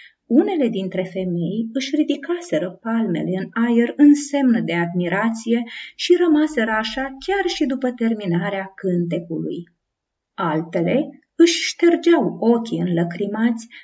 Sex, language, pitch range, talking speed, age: female, Romanian, 185-255 Hz, 110 wpm, 30-49